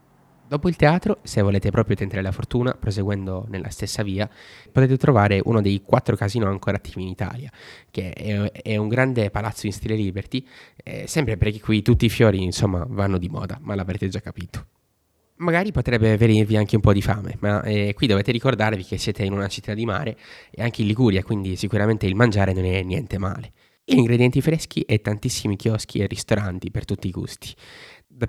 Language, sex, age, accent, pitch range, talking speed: Italian, male, 20-39, native, 95-115 Hz, 190 wpm